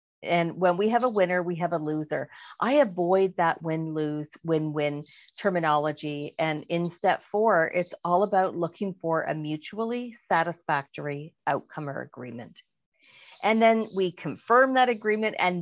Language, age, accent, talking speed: English, 40-59, American, 145 wpm